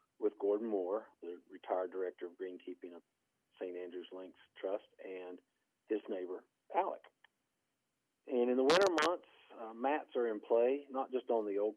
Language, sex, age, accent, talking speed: English, male, 50-69, American, 165 wpm